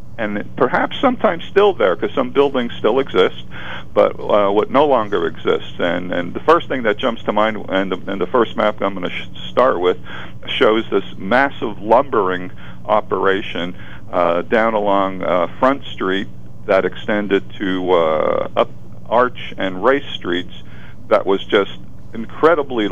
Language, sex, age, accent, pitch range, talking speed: English, male, 50-69, American, 95-115 Hz, 150 wpm